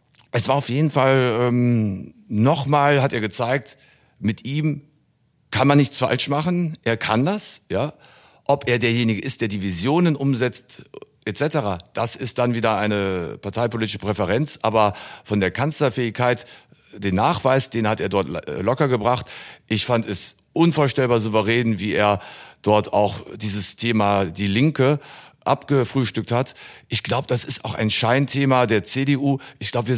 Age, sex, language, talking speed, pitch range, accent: 50-69, male, German, 150 wpm, 100-130 Hz, German